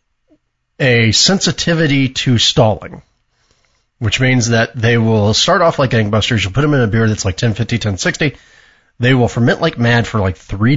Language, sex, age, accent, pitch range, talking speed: English, male, 40-59, American, 105-130 Hz, 175 wpm